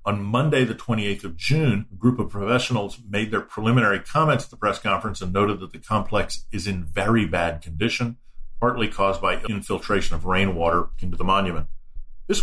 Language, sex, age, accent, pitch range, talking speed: English, male, 50-69, American, 95-120 Hz, 185 wpm